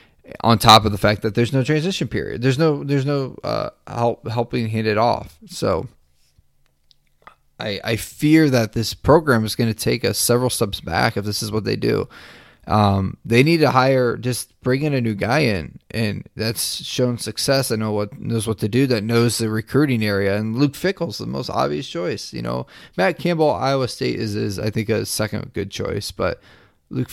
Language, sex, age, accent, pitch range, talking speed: English, male, 20-39, American, 110-135 Hz, 205 wpm